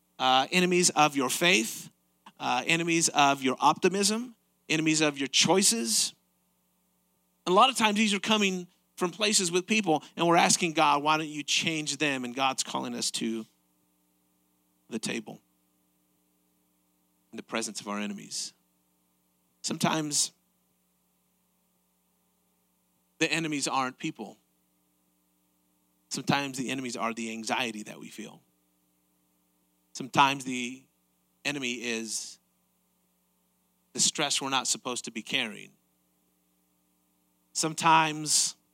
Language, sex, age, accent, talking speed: English, male, 40-59, American, 115 wpm